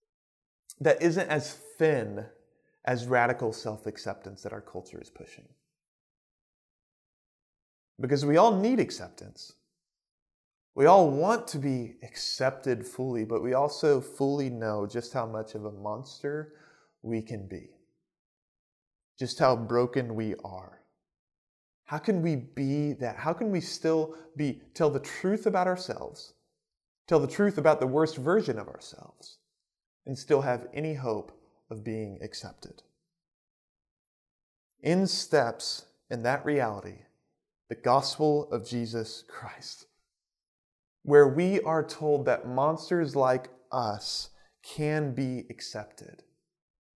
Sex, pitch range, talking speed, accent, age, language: male, 115-160 Hz, 125 wpm, American, 20-39, English